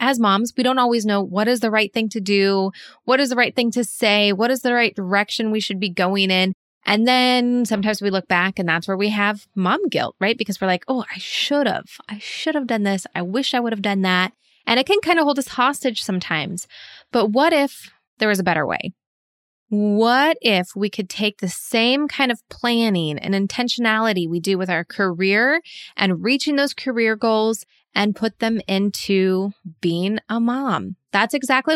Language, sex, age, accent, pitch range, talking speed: English, female, 20-39, American, 195-250 Hz, 210 wpm